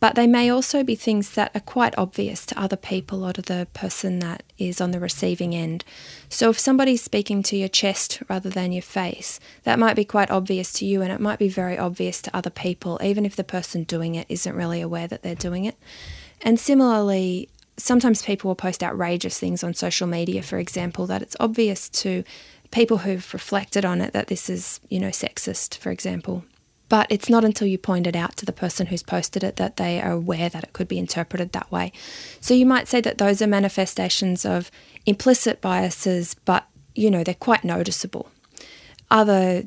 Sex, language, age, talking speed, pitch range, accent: female, English, 20-39, 205 wpm, 180-215 Hz, Australian